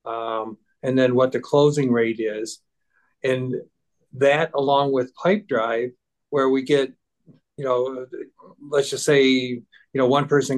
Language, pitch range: English, 125-145 Hz